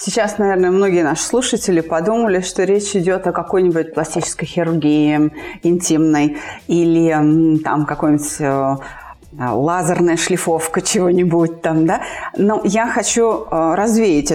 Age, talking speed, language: 30-49, 110 wpm, Russian